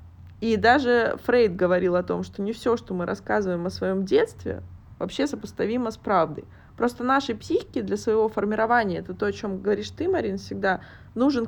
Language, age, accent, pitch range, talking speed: Russian, 20-39, native, 195-240 Hz, 180 wpm